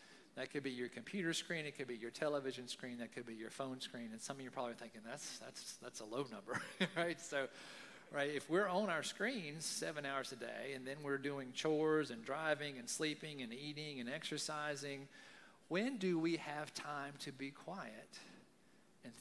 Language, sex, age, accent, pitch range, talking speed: English, male, 40-59, American, 135-170 Hz, 205 wpm